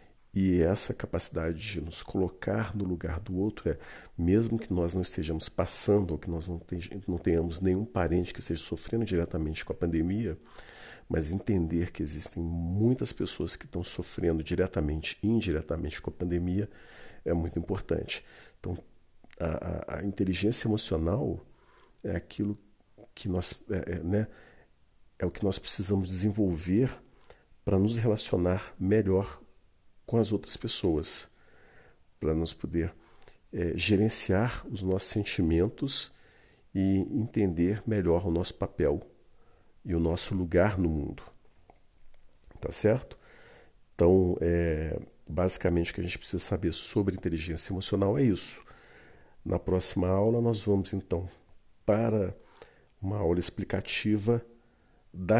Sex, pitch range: male, 85-105 Hz